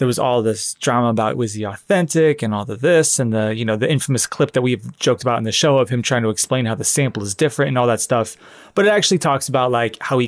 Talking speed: 285 wpm